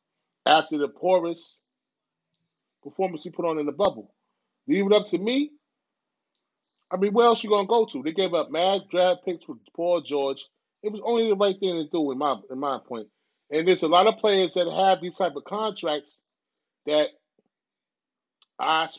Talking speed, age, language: 190 wpm, 30-49, English